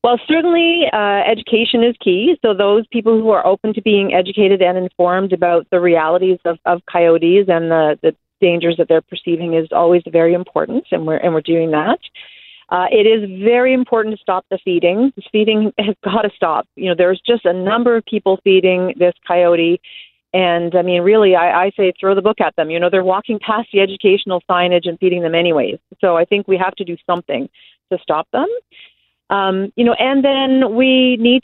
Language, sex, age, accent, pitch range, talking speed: English, female, 40-59, American, 175-220 Hz, 205 wpm